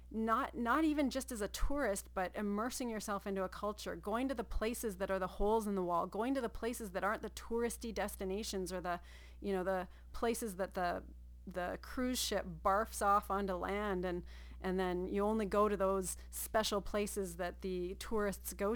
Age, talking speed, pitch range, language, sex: 30-49, 200 wpm, 175-210 Hz, English, female